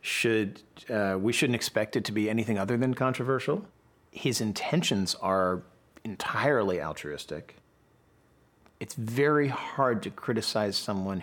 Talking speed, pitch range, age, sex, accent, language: 125 wpm, 95-110 Hz, 40-59, male, American, English